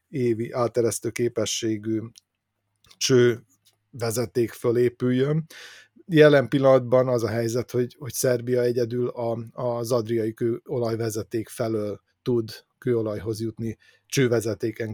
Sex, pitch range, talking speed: male, 110-125 Hz, 90 wpm